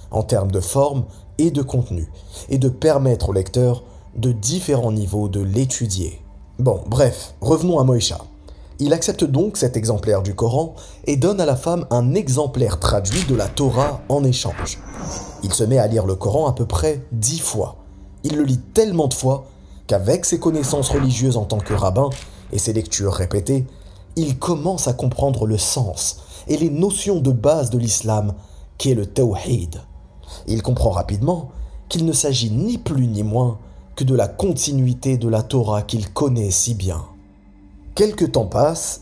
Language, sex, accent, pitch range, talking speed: French, male, French, 100-140 Hz, 170 wpm